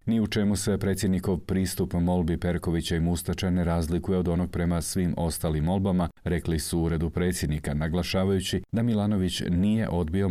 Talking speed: 155 wpm